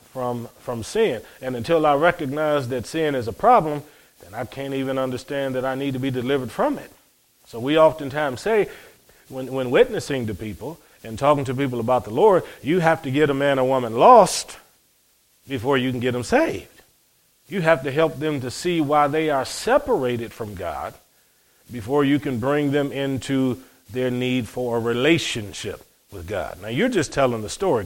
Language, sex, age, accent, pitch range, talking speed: English, male, 40-59, American, 120-145 Hz, 190 wpm